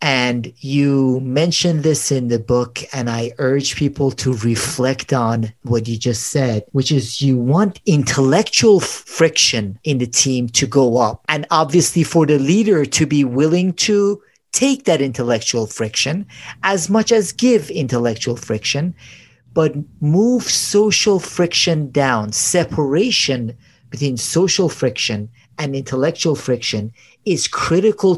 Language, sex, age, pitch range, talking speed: English, male, 40-59, 125-165 Hz, 135 wpm